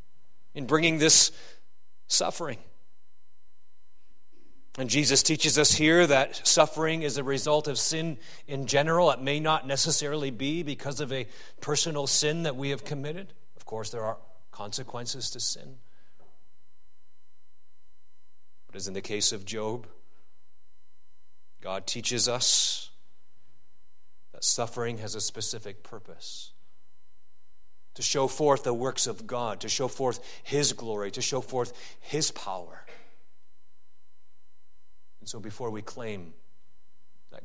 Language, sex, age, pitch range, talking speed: English, male, 40-59, 120-150 Hz, 125 wpm